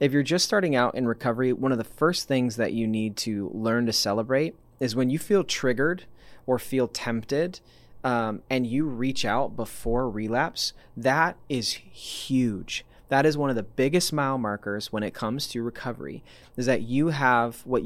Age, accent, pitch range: 20-39, American, 115-140 Hz